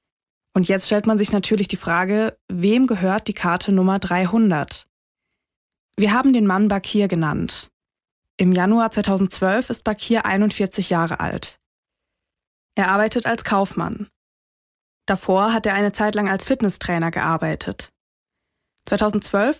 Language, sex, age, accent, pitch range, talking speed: German, female, 20-39, German, 185-220 Hz, 130 wpm